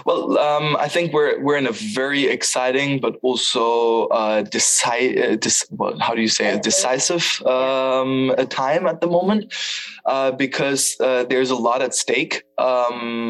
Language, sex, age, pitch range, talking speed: English, male, 20-39, 115-135 Hz, 170 wpm